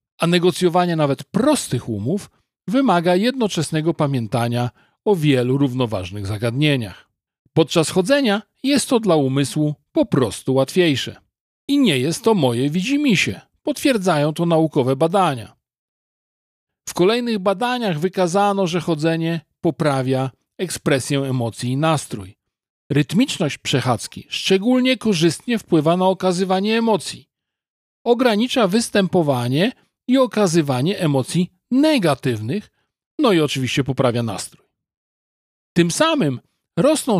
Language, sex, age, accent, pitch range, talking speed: Polish, male, 40-59, native, 135-205 Hz, 105 wpm